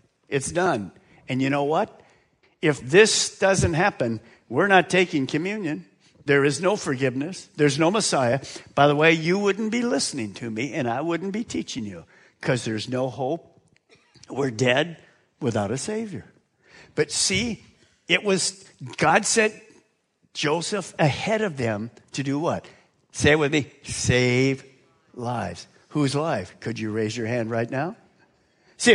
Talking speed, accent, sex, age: 155 wpm, American, male, 50-69